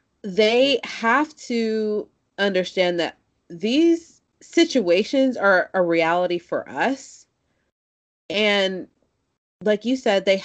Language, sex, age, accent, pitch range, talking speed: English, female, 30-49, American, 150-210 Hz, 100 wpm